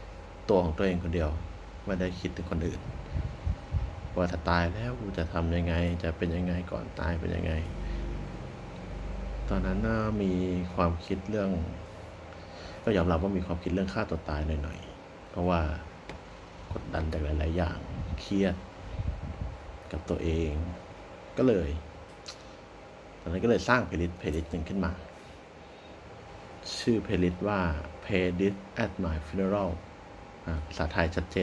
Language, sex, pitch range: Thai, male, 85-95 Hz